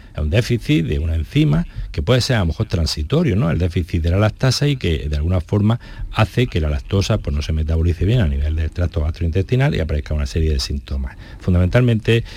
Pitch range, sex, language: 85-110 Hz, male, Spanish